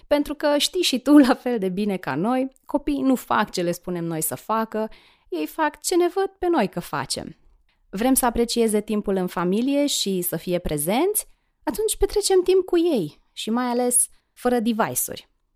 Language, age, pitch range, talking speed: Romanian, 20-39, 190-255 Hz, 190 wpm